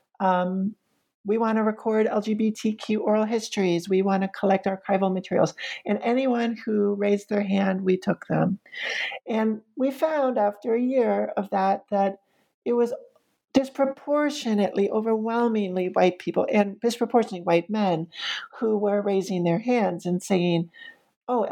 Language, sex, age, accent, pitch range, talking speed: English, male, 40-59, American, 185-225 Hz, 140 wpm